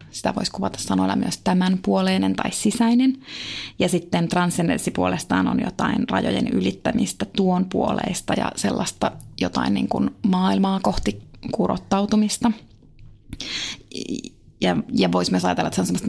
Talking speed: 130 wpm